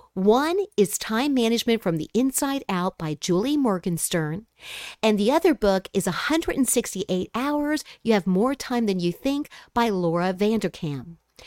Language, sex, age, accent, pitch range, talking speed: English, female, 50-69, American, 190-275 Hz, 145 wpm